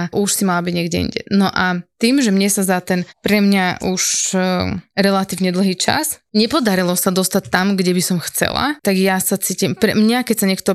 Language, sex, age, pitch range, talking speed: Slovak, female, 20-39, 185-215 Hz, 210 wpm